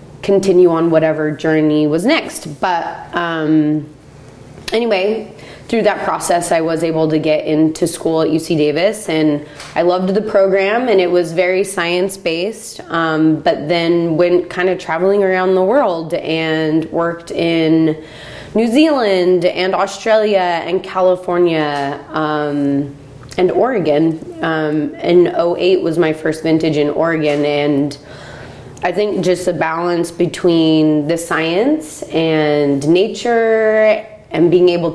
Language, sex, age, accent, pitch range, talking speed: English, female, 20-39, American, 155-190 Hz, 130 wpm